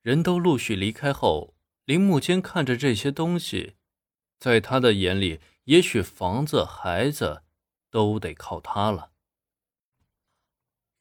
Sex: male